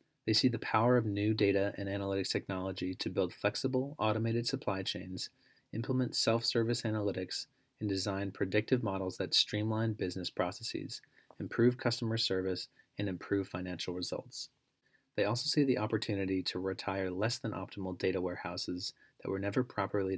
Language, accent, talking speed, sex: English, American, 150 wpm, male